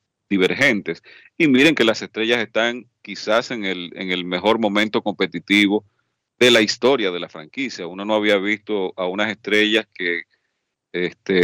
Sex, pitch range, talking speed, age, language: male, 95-115 Hz, 155 wpm, 40-59, Spanish